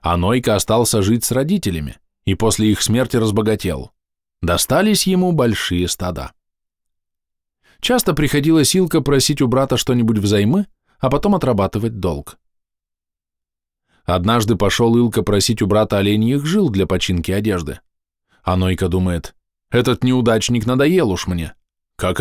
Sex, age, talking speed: male, 20-39, 120 wpm